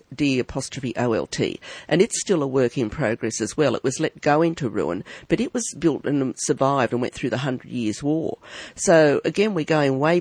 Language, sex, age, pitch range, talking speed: English, female, 50-69, 135-160 Hz, 200 wpm